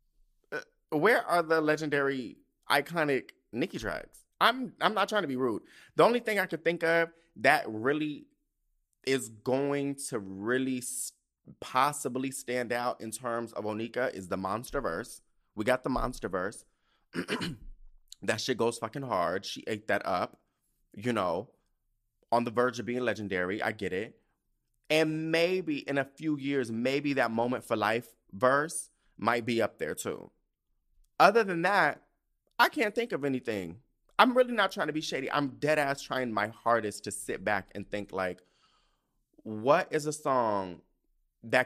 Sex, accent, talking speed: male, American, 160 wpm